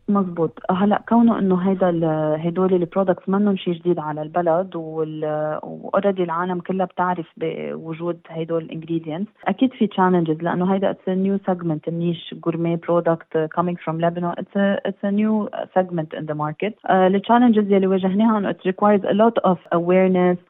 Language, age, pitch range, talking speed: Arabic, 30-49, 170-195 Hz, 145 wpm